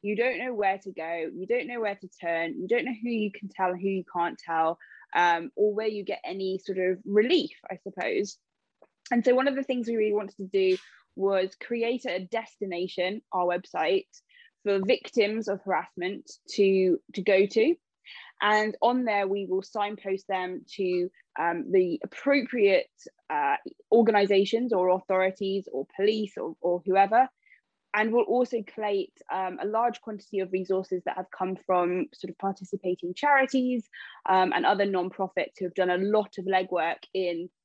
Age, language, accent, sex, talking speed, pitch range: 20-39, English, British, female, 175 wpm, 185-235 Hz